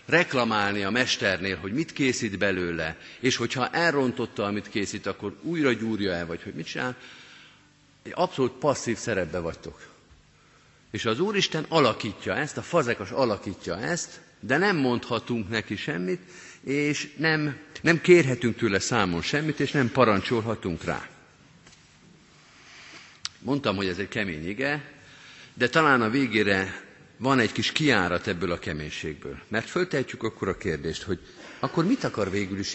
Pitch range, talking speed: 100-140 Hz, 145 wpm